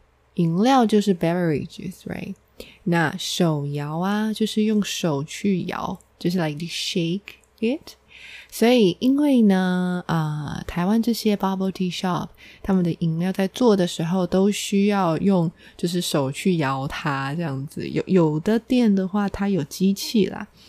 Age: 20-39